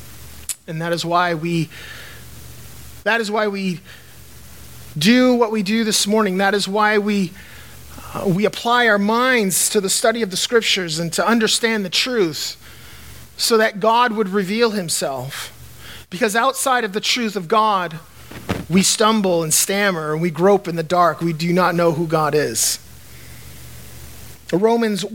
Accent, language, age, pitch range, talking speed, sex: American, English, 30-49, 160-235 Hz, 155 wpm, male